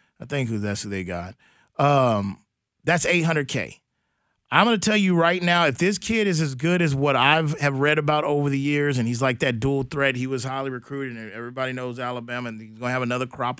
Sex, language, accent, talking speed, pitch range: male, English, American, 235 wpm, 130-175 Hz